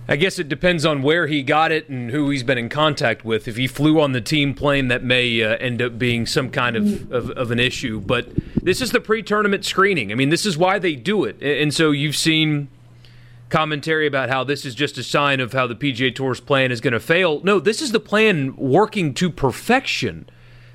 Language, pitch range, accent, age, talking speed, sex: English, 125-180 Hz, American, 30-49, 230 wpm, male